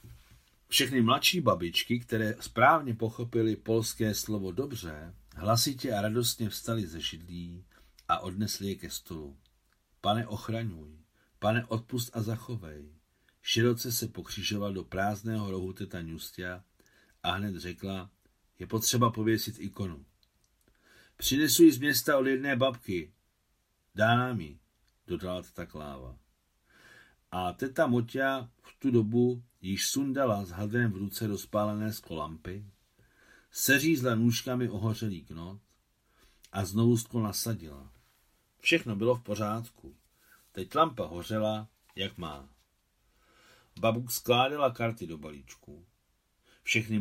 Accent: native